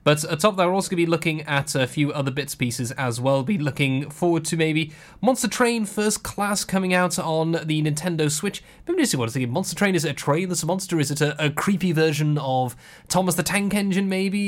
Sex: male